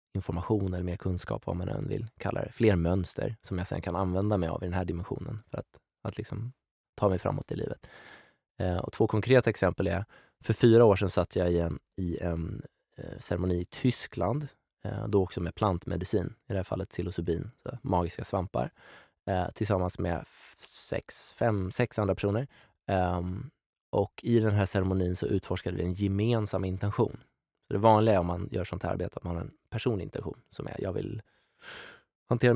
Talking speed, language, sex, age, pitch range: 195 wpm, Swedish, male, 20-39, 90-115 Hz